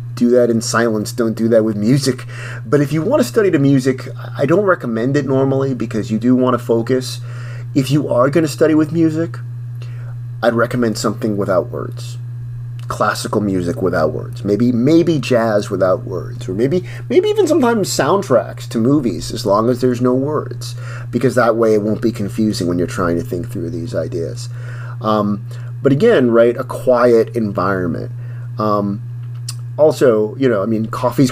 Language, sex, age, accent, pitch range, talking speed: English, male, 30-49, American, 115-125 Hz, 180 wpm